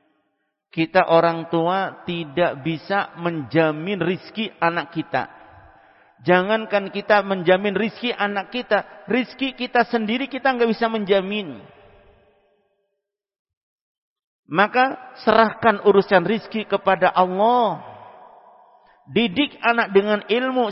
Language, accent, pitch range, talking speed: Indonesian, native, 165-220 Hz, 95 wpm